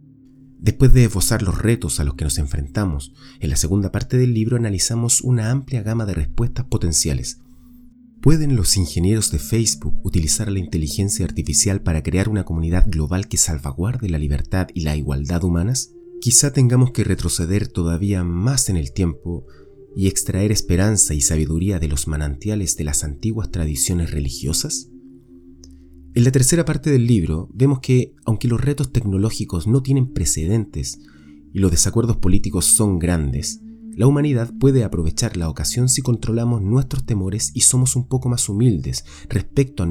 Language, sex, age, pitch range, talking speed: Spanish, male, 30-49, 80-125 Hz, 160 wpm